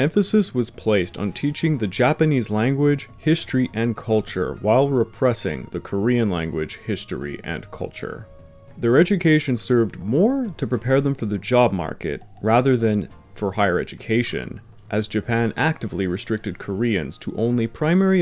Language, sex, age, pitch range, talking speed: English, male, 30-49, 105-135 Hz, 140 wpm